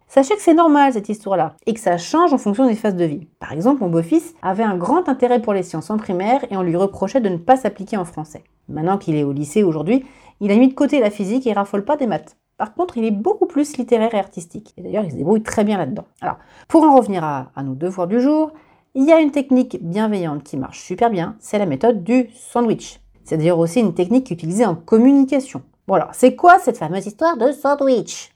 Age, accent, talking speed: 40-59, French, 250 wpm